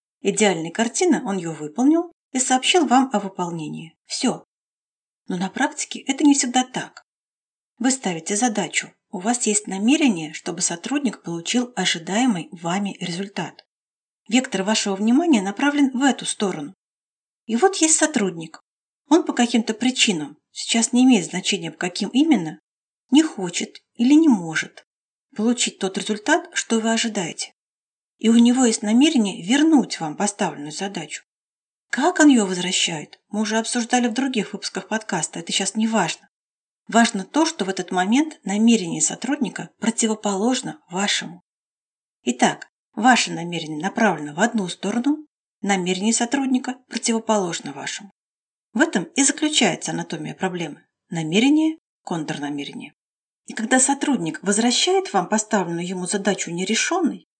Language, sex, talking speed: Russian, female, 130 wpm